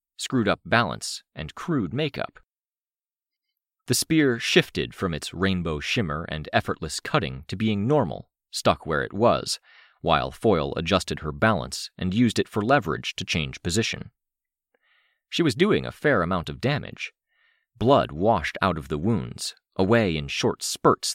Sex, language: male, English